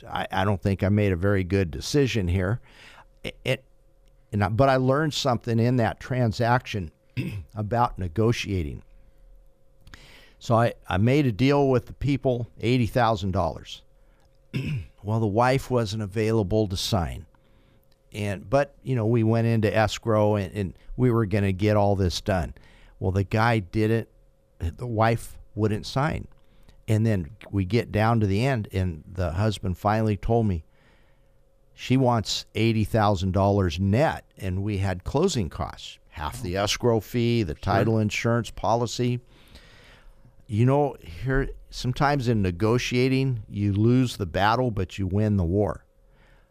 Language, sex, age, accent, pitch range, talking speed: English, male, 50-69, American, 100-120 Hz, 150 wpm